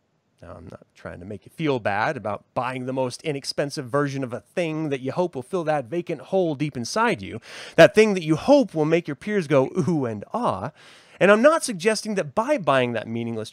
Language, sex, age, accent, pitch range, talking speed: English, male, 30-49, American, 125-205 Hz, 225 wpm